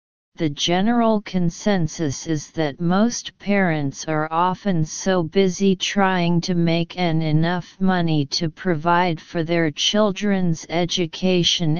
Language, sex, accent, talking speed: English, female, American, 115 wpm